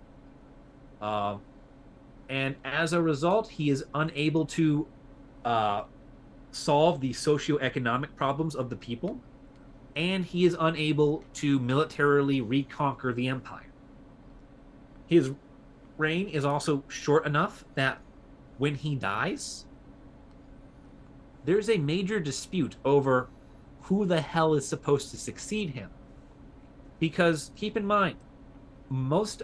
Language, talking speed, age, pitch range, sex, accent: English, 110 wpm, 30-49, 135-160 Hz, male, American